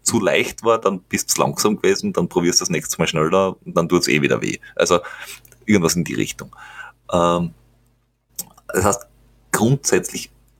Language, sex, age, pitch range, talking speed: German, male, 30-49, 90-125 Hz, 175 wpm